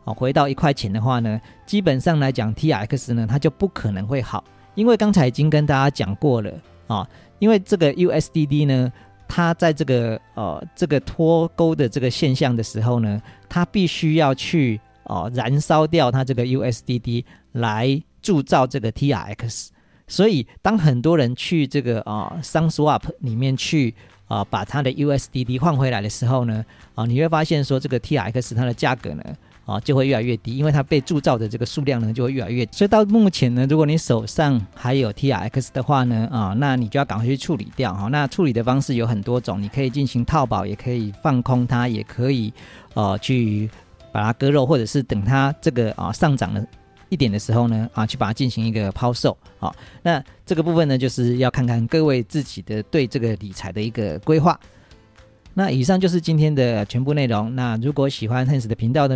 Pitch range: 115-150 Hz